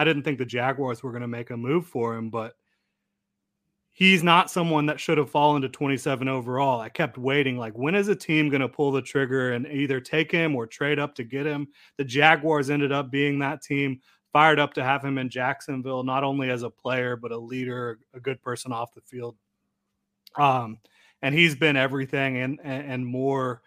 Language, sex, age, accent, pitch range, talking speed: English, male, 30-49, American, 130-150 Hz, 210 wpm